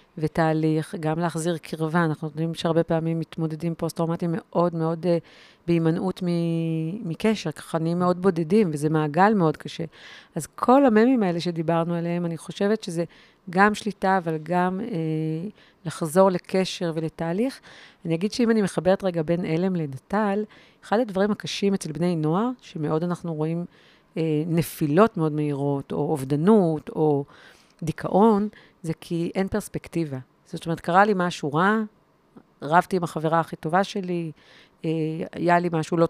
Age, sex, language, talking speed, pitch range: 40-59, female, Hebrew, 145 wpm, 160-200 Hz